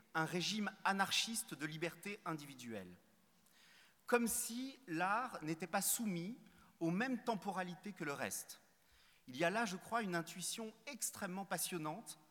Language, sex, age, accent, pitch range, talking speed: Portuguese, male, 30-49, French, 165-215 Hz, 135 wpm